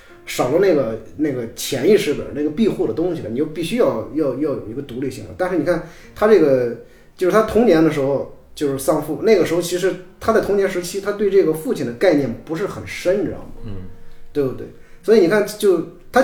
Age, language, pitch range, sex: 20-39, Chinese, 125-185 Hz, male